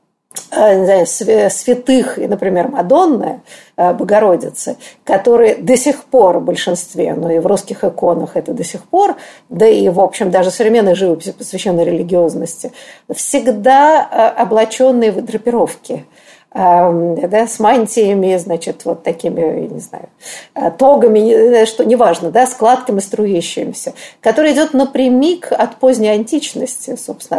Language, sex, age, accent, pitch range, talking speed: Russian, female, 50-69, native, 205-270 Hz, 120 wpm